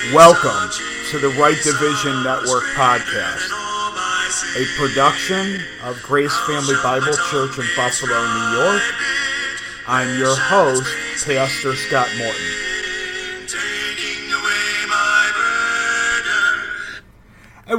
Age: 40-59